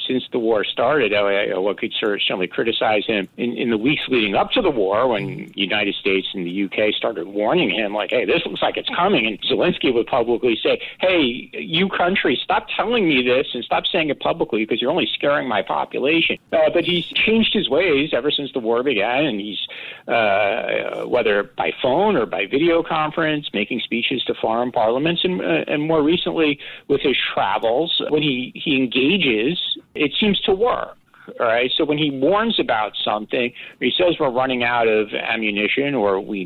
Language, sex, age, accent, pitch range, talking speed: English, male, 50-69, American, 110-175 Hz, 190 wpm